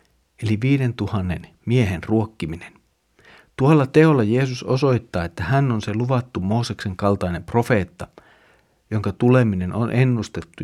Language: Finnish